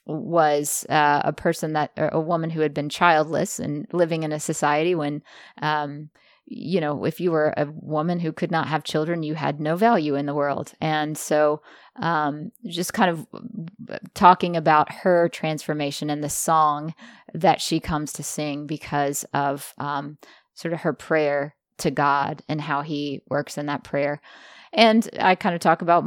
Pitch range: 150-180 Hz